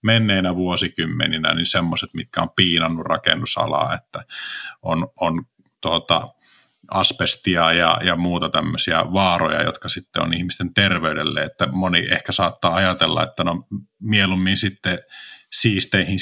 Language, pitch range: Finnish, 85-100 Hz